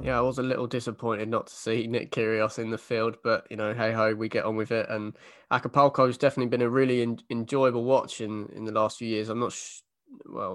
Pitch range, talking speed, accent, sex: 110-120 Hz, 245 wpm, British, male